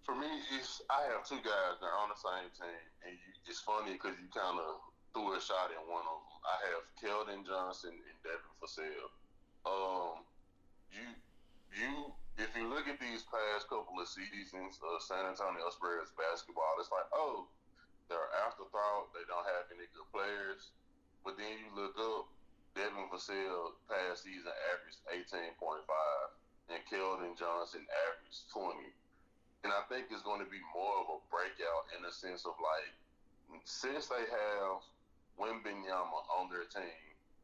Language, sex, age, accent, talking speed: English, male, 20-39, American, 160 wpm